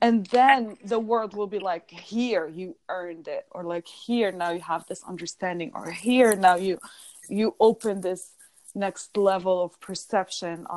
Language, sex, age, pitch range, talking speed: English, female, 20-39, 180-240 Hz, 165 wpm